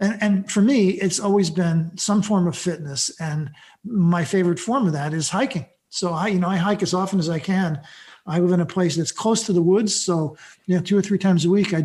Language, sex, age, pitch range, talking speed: English, male, 50-69, 165-195 Hz, 250 wpm